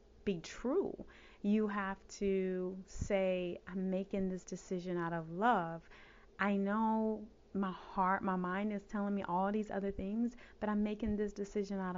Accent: American